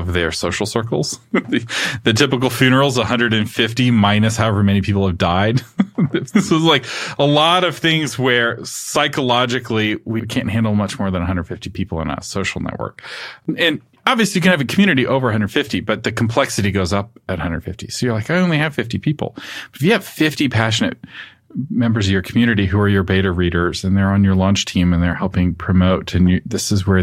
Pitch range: 95-130 Hz